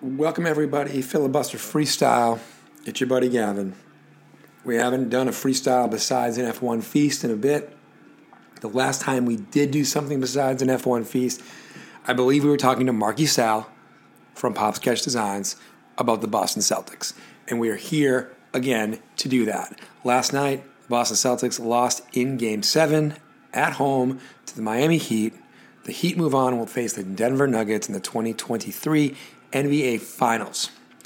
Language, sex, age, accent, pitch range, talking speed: English, male, 40-59, American, 115-140 Hz, 160 wpm